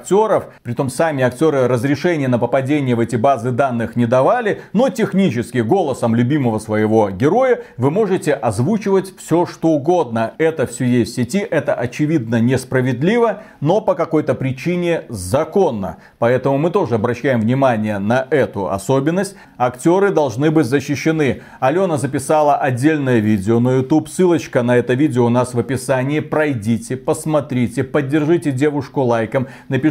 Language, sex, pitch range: Russian, male, 125-165 Hz